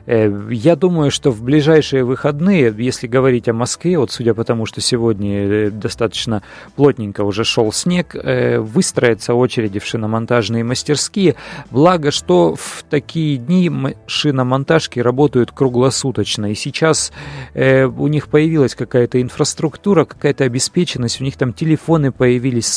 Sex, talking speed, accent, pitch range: male, 125 wpm, native, 120-155 Hz